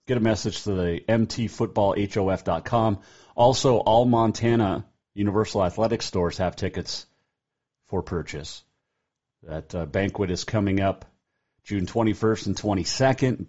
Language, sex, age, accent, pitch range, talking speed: English, male, 40-59, American, 85-105 Hz, 120 wpm